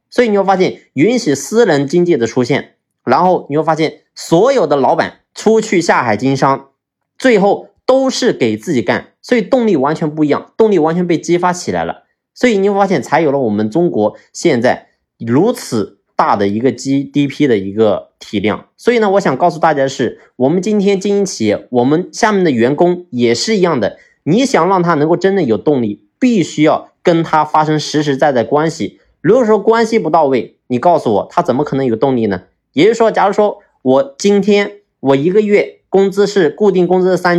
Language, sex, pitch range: Chinese, male, 135-205 Hz